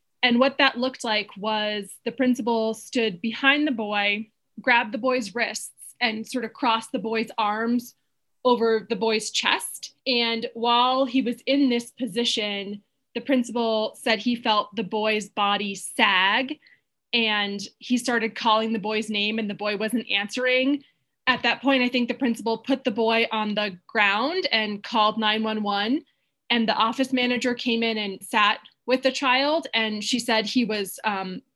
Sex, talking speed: female, 165 wpm